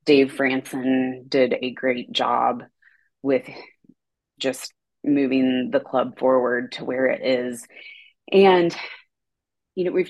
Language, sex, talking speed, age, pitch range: English, female, 120 wpm, 20-39, 125-145 Hz